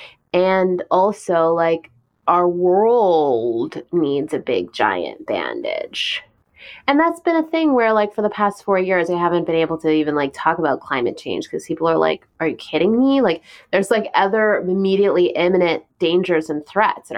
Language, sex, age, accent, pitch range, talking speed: English, female, 20-39, American, 160-190 Hz, 180 wpm